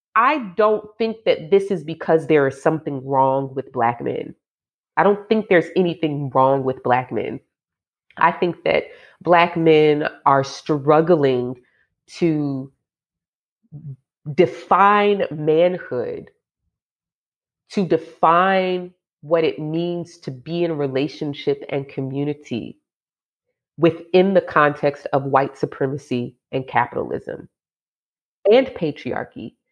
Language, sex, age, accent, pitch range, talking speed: English, female, 30-49, American, 140-185 Hz, 110 wpm